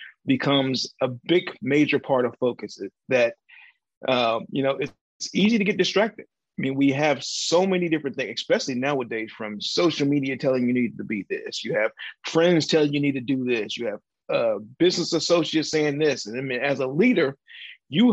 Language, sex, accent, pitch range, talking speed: English, male, American, 120-150 Hz, 195 wpm